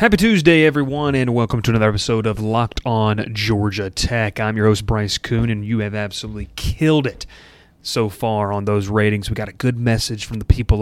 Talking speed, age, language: 205 wpm, 30-49, English